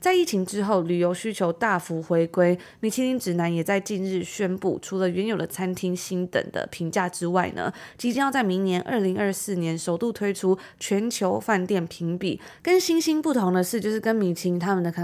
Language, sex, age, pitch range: Chinese, female, 20-39, 180-220 Hz